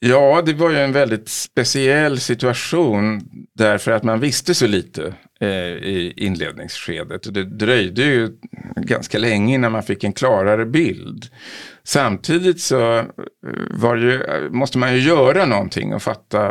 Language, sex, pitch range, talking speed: Swedish, male, 105-130 Hz, 140 wpm